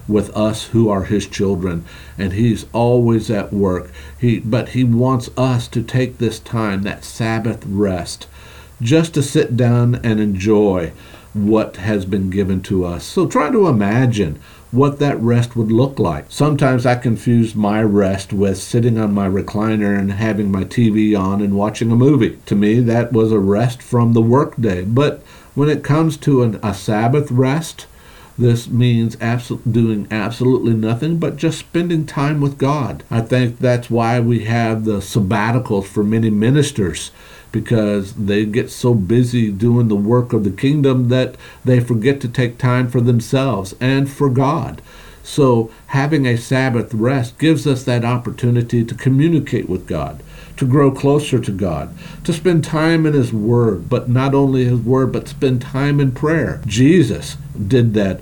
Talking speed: 170 wpm